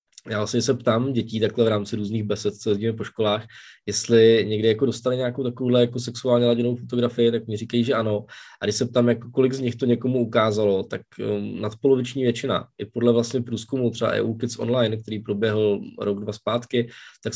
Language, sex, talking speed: Czech, male, 195 wpm